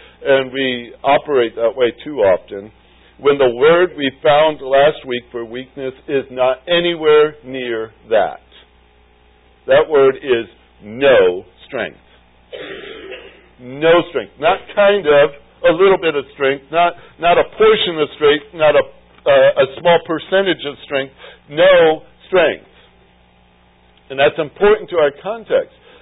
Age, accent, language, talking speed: 60-79, American, English, 135 wpm